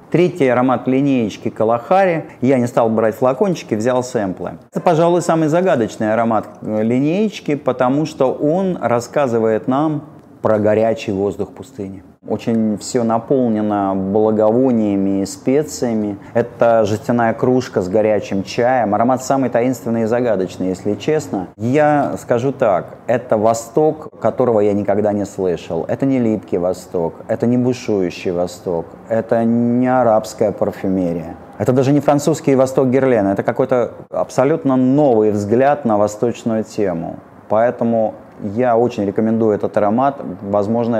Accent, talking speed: native, 130 wpm